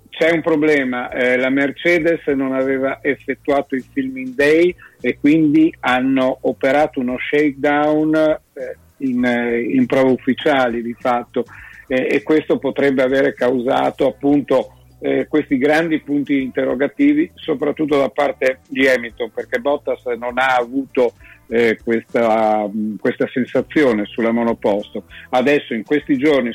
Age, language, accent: 50-69, Italian, native